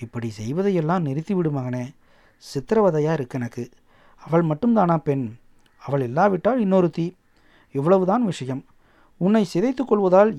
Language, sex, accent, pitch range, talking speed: Tamil, male, native, 145-205 Hz, 105 wpm